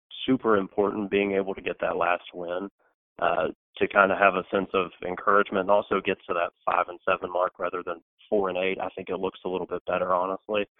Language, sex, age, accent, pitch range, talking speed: English, male, 30-49, American, 95-105 Hz, 230 wpm